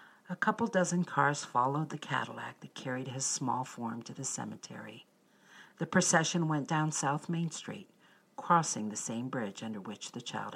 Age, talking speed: 50-69, 170 wpm